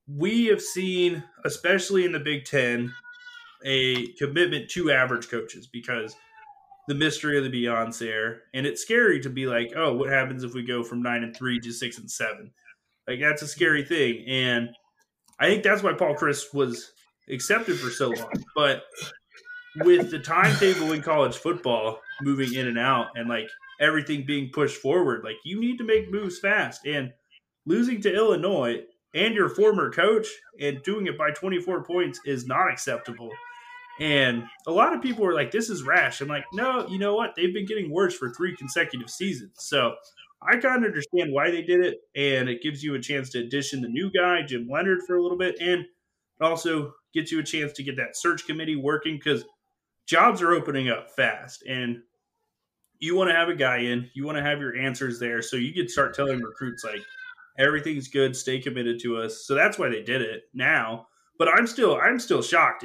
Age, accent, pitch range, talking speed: 20-39, American, 125-185 Hz, 200 wpm